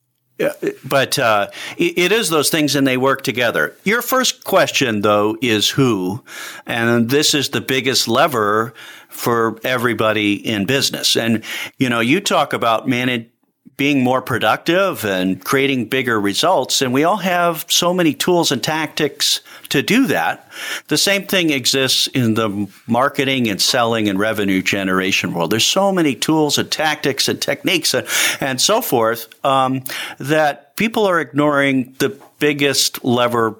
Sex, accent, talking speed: male, American, 150 wpm